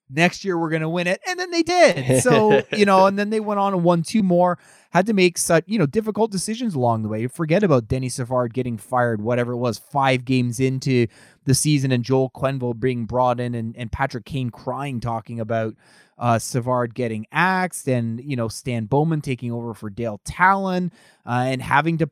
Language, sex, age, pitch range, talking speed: English, male, 20-39, 120-165 Hz, 215 wpm